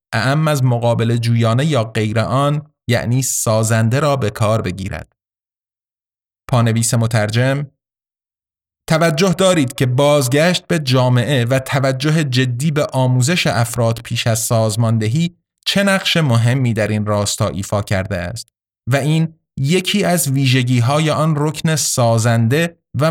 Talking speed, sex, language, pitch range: 125 wpm, male, Persian, 110-145 Hz